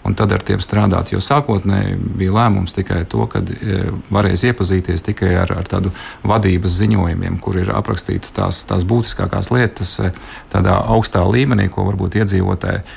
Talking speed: 155 wpm